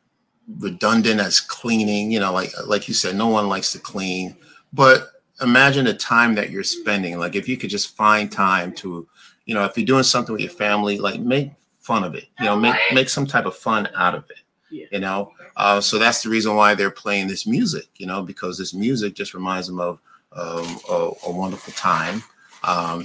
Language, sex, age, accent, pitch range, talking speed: English, male, 30-49, American, 95-110 Hz, 210 wpm